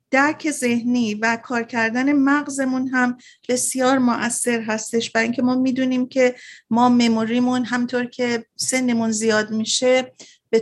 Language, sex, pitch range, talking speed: Persian, female, 225-260 Hz, 130 wpm